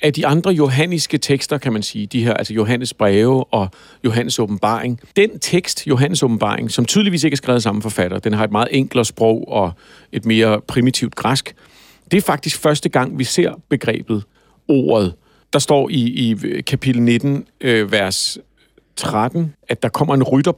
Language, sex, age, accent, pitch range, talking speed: Danish, male, 50-69, native, 120-150 Hz, 180 wpm